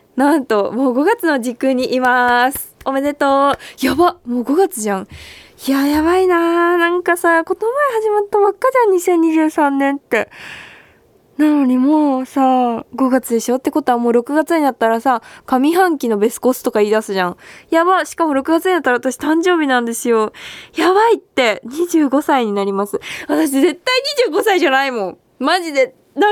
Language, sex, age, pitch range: Japanese, female, 20-39, 240-330 Hz